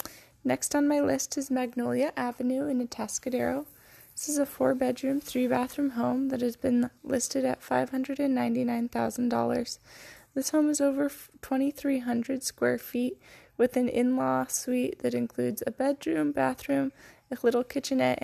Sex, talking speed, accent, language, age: female, 140 wpm, American, English, 10-29